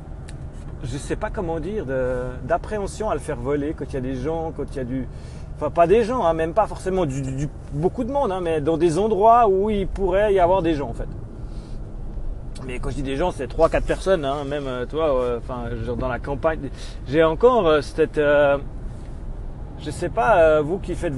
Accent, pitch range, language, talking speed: French, 130-185 Hz, French, 220 wpm